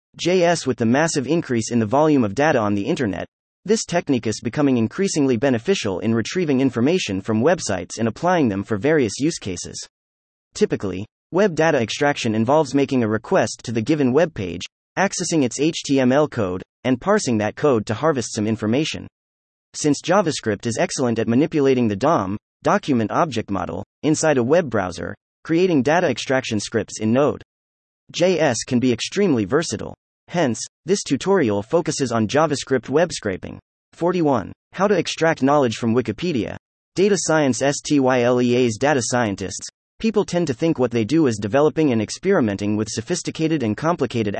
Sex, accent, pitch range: male, American, 110-155 Hz